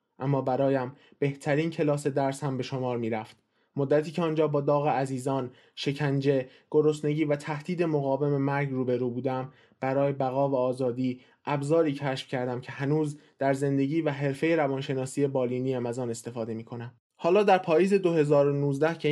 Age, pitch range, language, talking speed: 20-39, 130-145 Hz, Persian, 160 wpm